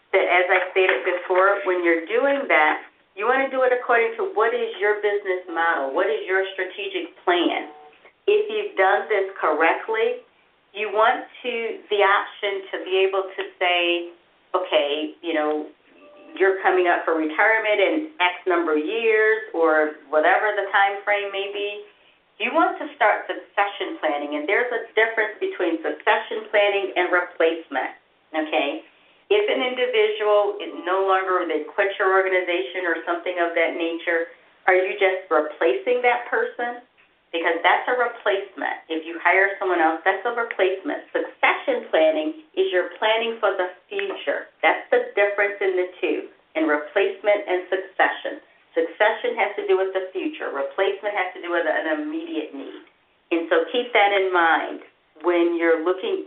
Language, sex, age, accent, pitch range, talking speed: English, female, 40-59, American, 170-235 Hz, 160 wpm